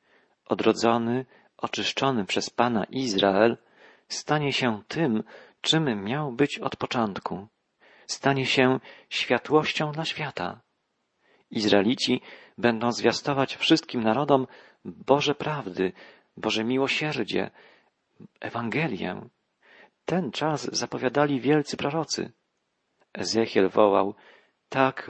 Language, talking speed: Polish, 85 wpm